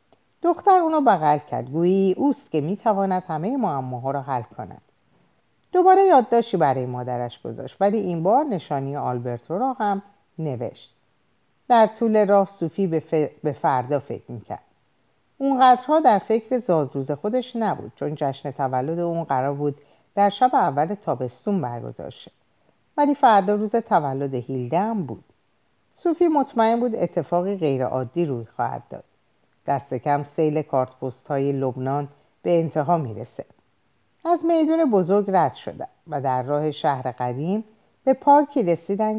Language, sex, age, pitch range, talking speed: Persian, female, 50-69, 140-225 Hz, 135 wpm